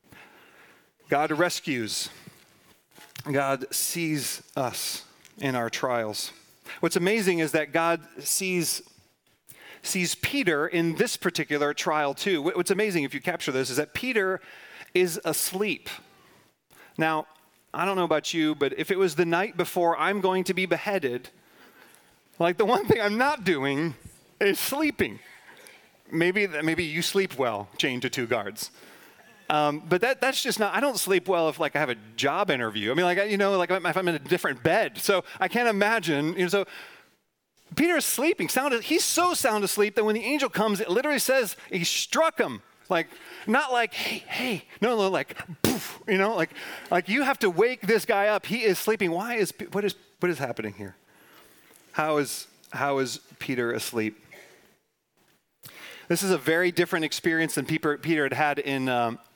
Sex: male